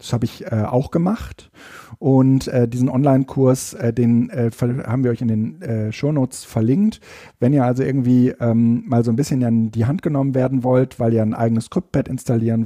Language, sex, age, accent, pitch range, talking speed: German, male, 50-69, German, 120-145 Hz, 205 wpm